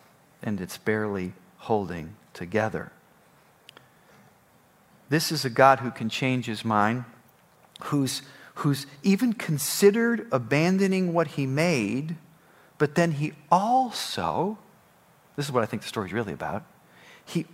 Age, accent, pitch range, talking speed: 40-59, American, 115-185 Hz, 125 wpm